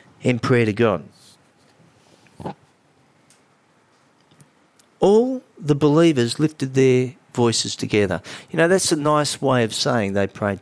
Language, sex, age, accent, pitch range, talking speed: English, male, 50-69, Australian, 105-135 Hz, 120 wpm